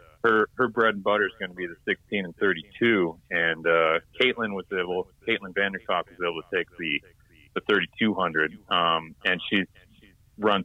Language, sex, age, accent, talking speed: English, male, 40-59, American, 175 wpm